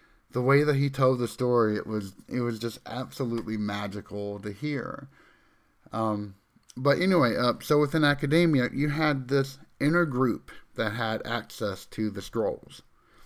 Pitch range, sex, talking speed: 105-125 Hz, male, 155 wpm